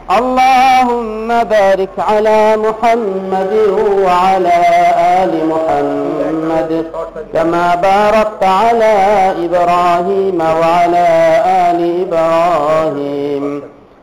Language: Bengali